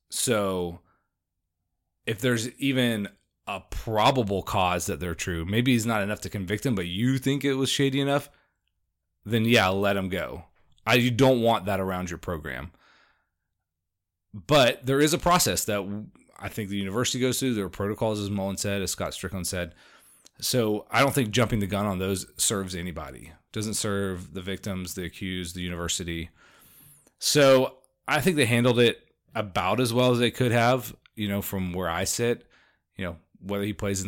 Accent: American